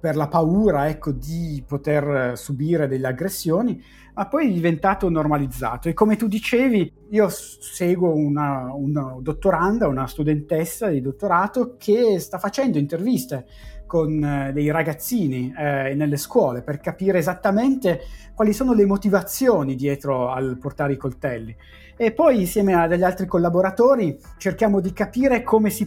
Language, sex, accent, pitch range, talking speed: Italian, male, native, 145-210 Hz, 135 wpm